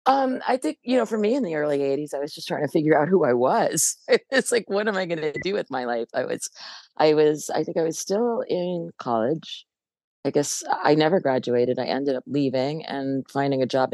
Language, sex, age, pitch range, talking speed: English, female, 40-59, 125-155 Hz, 240 wpm